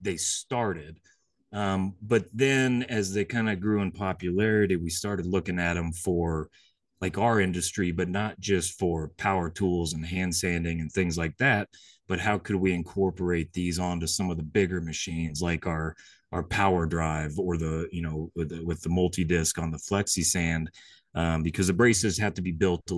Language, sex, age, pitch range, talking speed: English, male, 30-49, 85-95 Hz, 190 wpm